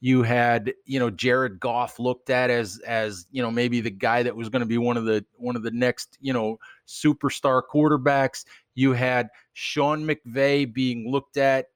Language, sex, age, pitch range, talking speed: English, male, 40-59, 120-140 Hz, 195 wpm